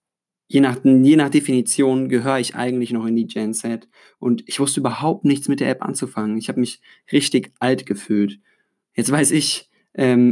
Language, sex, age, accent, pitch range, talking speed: German, male, 20-39, German, 110-130 Hz, 180 wpm